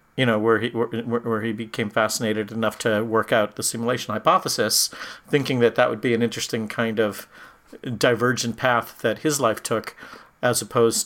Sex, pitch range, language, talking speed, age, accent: male, 115-130 Hz, English, 180 wpm, 50-69, American